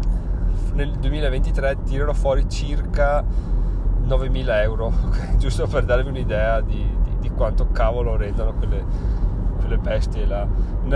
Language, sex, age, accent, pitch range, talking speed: Italian, male, 20-39, native, 90-120 Hz, 115 wpm